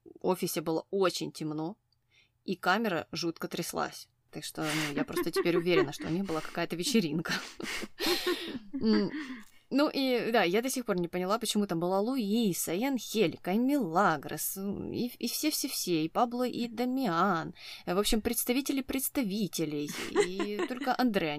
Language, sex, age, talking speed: Russian, female, 20-39, 150 wpm